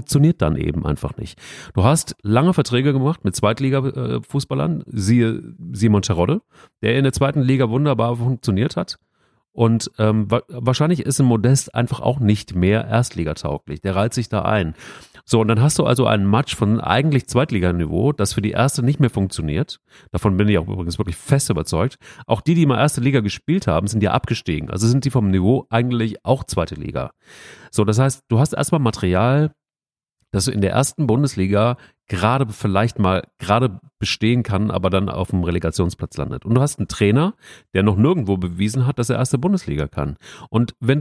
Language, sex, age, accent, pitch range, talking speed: German, male, 30-49, German, 100-135 Hz, 185 wpm